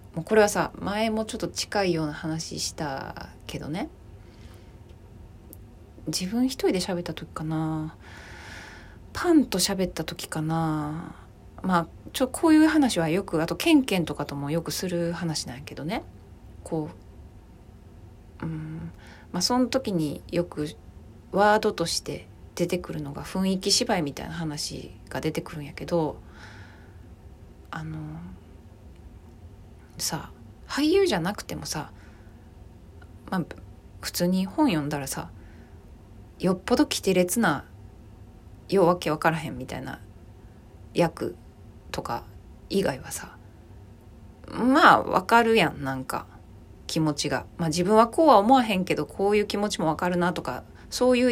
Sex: female